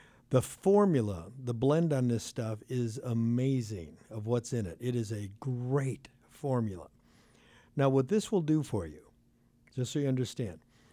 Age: 60-79